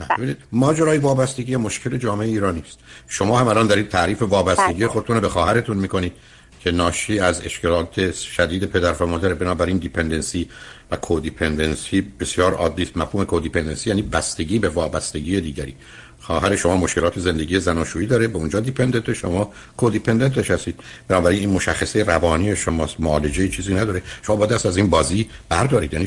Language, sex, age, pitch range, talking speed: Persian, male, 60-79, 90-125 Hz, 155 wpm